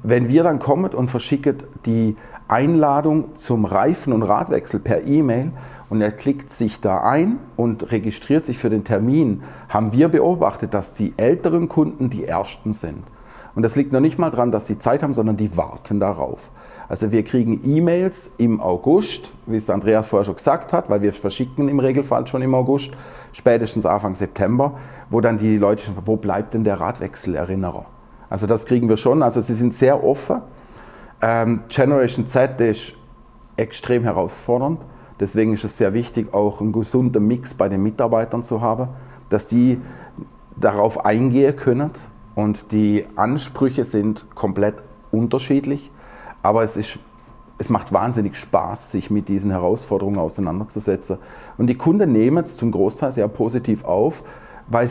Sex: male